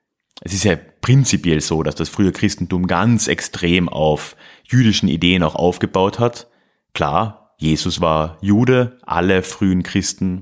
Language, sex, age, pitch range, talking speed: German, male, 30-49, 85-110 Hz, 140 wpm